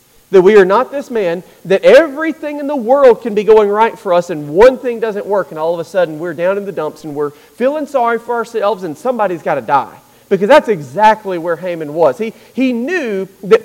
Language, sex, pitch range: English, male, 170-230 Hz